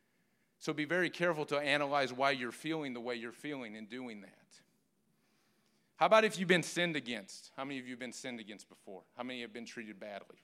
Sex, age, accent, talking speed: male, 40-59, American, 220 wpm